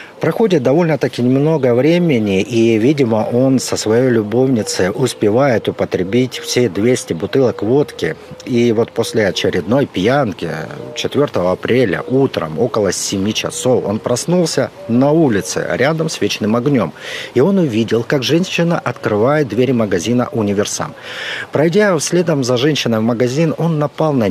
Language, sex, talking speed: Russian, male, 130 wpm